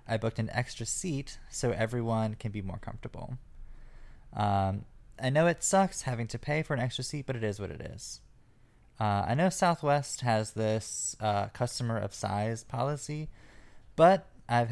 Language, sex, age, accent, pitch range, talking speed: English, male, 20-39, American, 105-135 Hz, 170 wpm